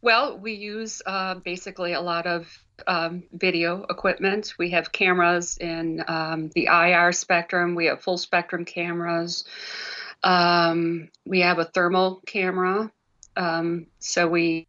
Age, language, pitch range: 50-69, English, 165-180 Hz